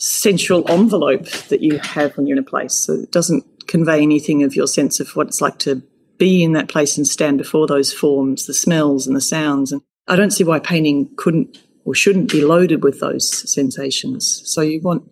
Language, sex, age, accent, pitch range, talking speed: English, female, 30-49, Australian, 150-200 Hz, 215 wpm